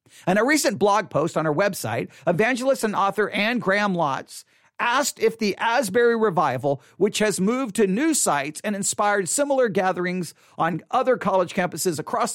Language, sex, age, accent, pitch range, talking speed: English, male, 50-69, American, 180-270 Hz, 165 wpm